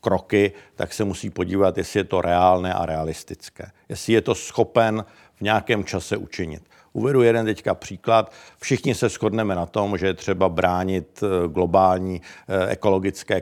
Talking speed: 150 wpm